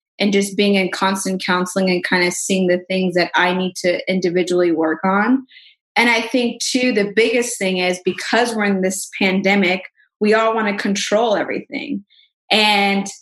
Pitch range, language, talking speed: 190-225 Hz, English, 175 wpm